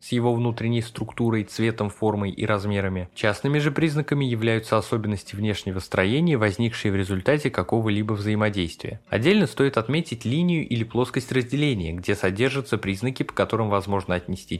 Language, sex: Russian, male